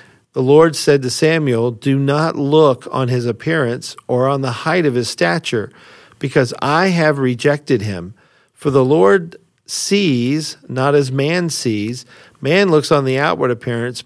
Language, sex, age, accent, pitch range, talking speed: English, male, 50-69, American, 120-140 Hz, 160 wpm